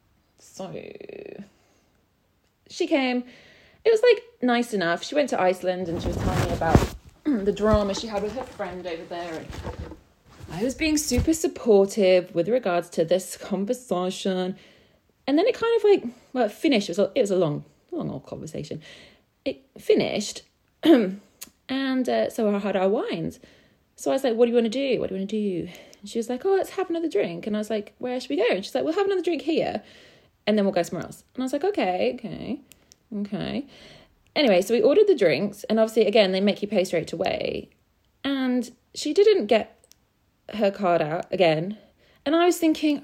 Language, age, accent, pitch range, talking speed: English, 30-49, British, 195-285 Hz, 200 wpm